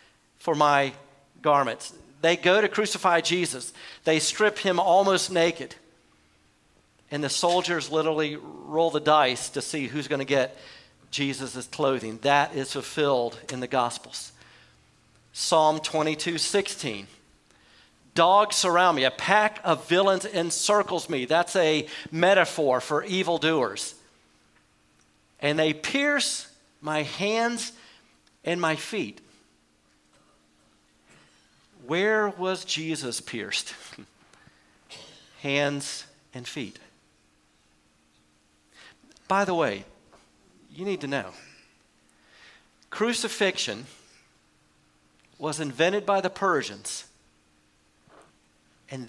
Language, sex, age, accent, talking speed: English, male, 50-69, American, 95 wpm